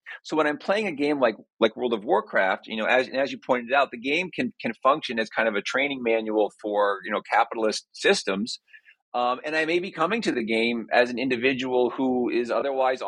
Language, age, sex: English, 40-59, male